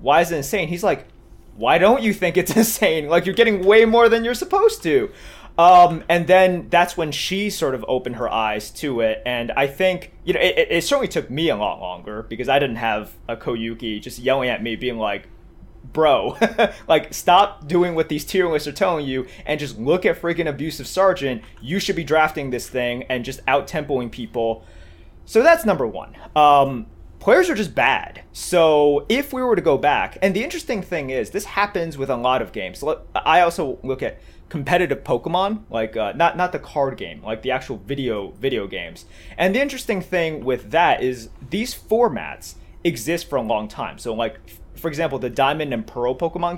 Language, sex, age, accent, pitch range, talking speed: English, male, 20-39, American, 125-185 Hz, 200 wpm